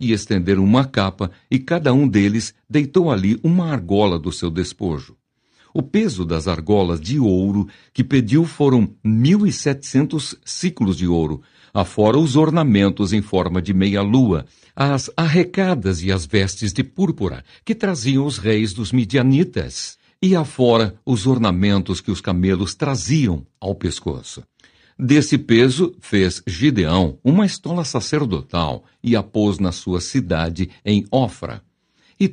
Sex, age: male, 60-79